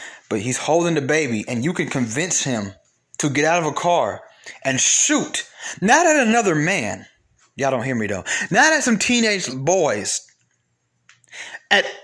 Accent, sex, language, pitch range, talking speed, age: American, male, English, 120-200 Hz, 165 wpm, 30-49